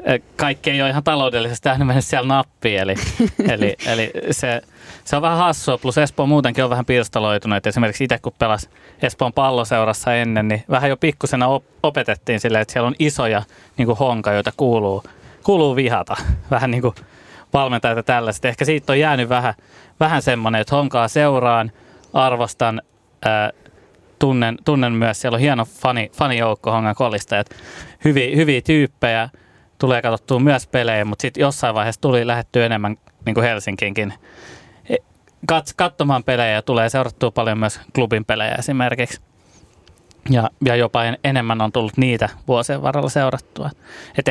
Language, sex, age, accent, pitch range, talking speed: Finnish, male, 20-39, native, 110-135 Hz, 145 wpm